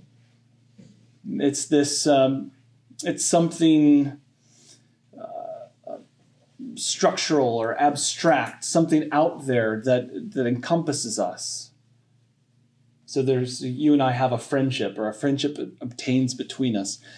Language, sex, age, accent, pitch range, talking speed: English, male, 30-49, American, 125-165 Hz, 105 wpm